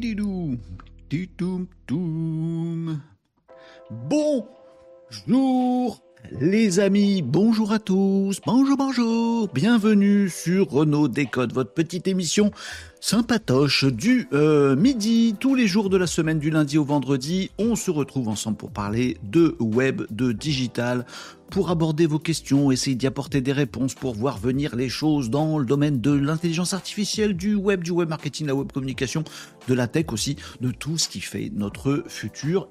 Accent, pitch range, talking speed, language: French, 130-200 Hz, 145 wpm, French